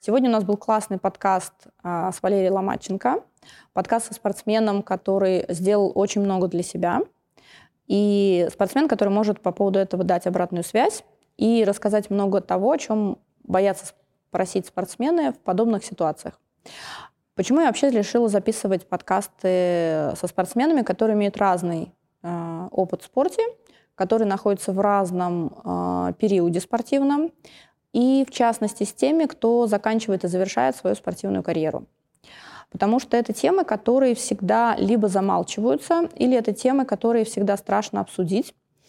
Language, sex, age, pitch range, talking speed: Russian, female, 20-39, 185-230 Hz, 140 wpm